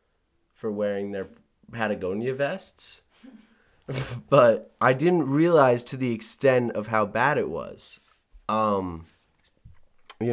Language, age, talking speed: English, 30-49, 110 wpm